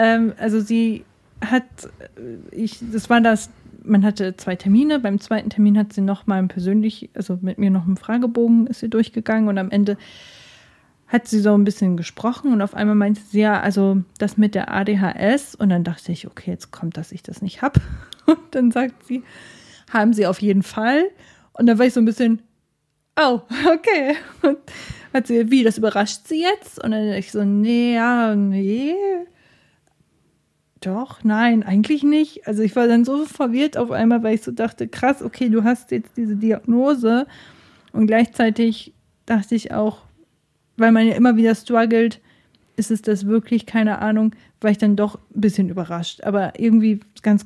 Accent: German